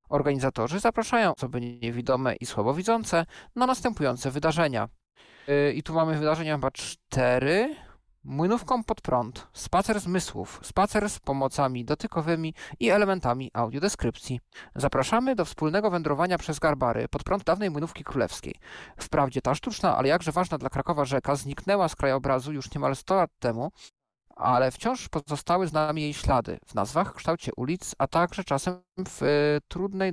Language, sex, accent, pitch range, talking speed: Polish, male, native, 135-185 Hz, 145 wpm